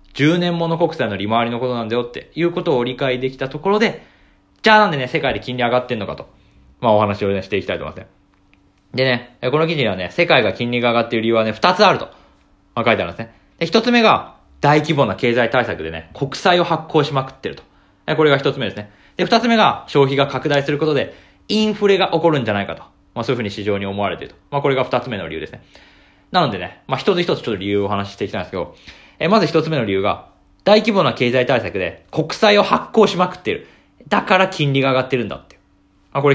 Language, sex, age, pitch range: Japanese, male, 20-39, 100-160 Hz